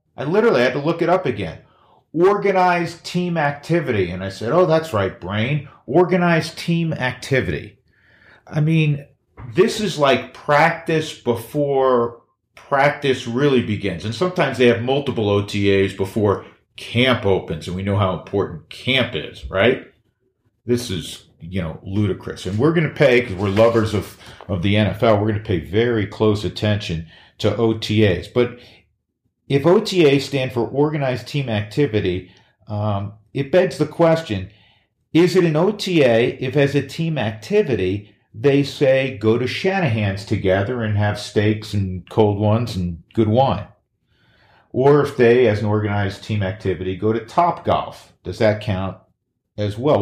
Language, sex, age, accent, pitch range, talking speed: English, male, 40-59, American, 105-145 Hz, 155 wpm